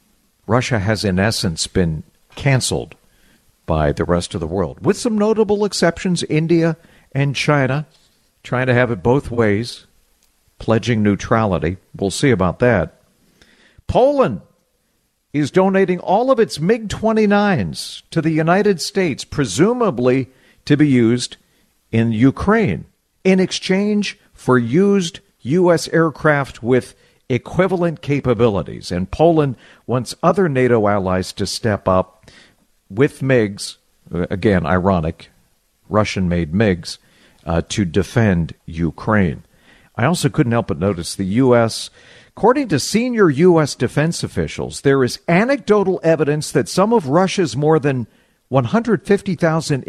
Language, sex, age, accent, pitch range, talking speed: English, male, 50-69, American, 105-175 Hz, 125 wpm